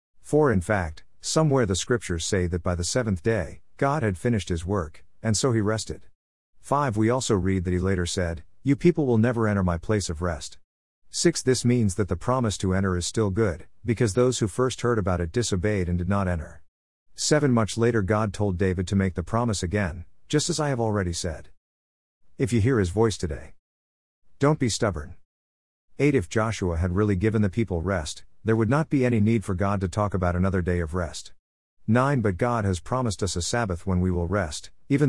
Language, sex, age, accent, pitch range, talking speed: English, male, 50-69, American, 90-115 Hz, 210 wpm